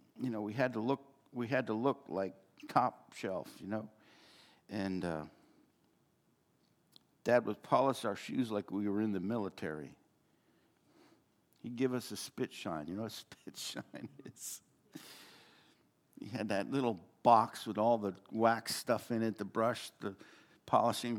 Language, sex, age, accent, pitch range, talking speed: English, male, 60-79, American, 110-165 Hz, 160 wpm